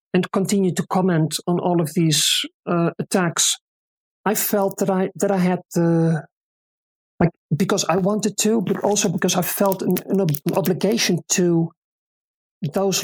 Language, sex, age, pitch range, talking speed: English, male, 40-59, 170-195 Hz, 150 wpm